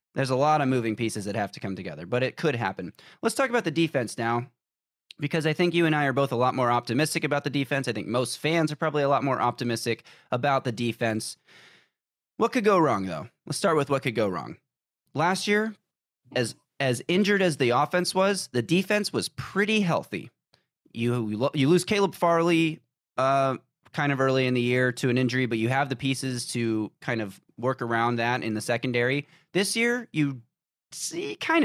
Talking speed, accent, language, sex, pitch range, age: 210 wpm, American, English, male, 120-170 Hz, 20-39